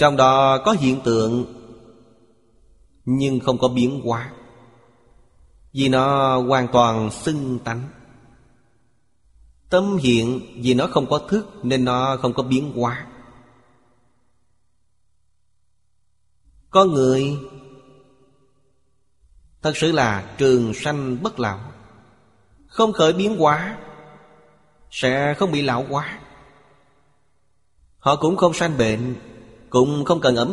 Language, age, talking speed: Vietnamese, 20-39, 110 wpm